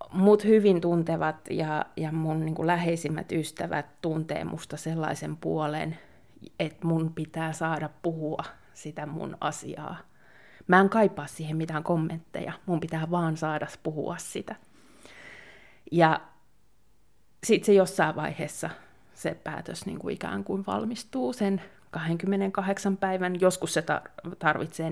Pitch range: 160-185 Hz